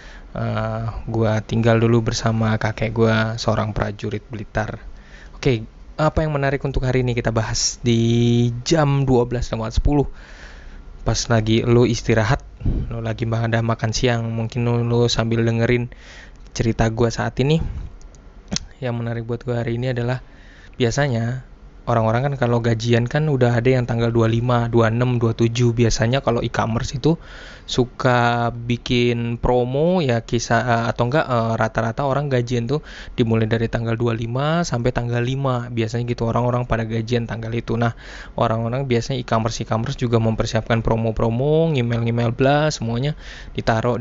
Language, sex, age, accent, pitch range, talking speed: Indonesian, male, 20-39, native, 115-125 Hz, 140 wpm